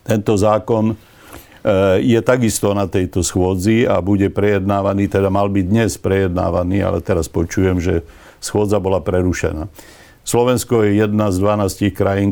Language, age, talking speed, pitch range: Slovak, 60-79, 135 wpm, 95-105 Hz